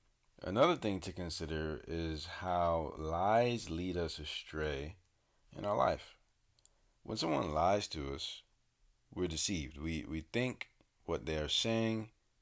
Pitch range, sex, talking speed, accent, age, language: 80-105 Hz, male, 130 wpm, American, 40-59, English